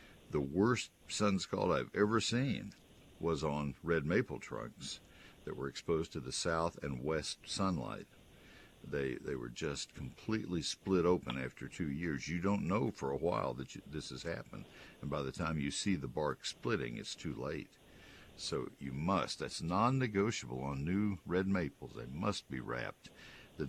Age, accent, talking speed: 60-79, American, 170 wpm